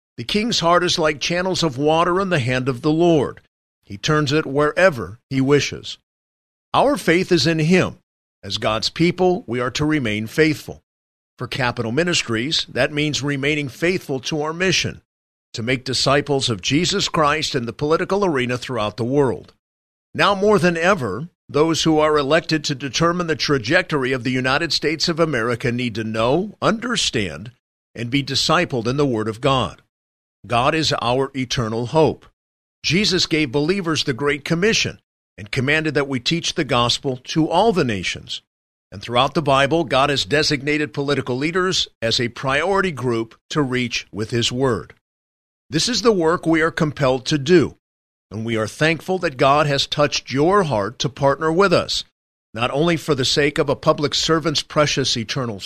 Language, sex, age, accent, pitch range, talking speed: English, male, 50-69, American, 120-160 Hz, 170 wpm